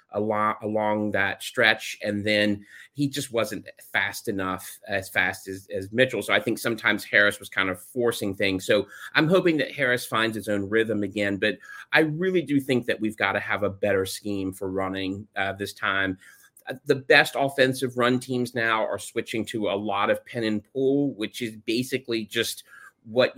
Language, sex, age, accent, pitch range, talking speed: English, male, 30-49, American, 100-120 Hz, 195 wpm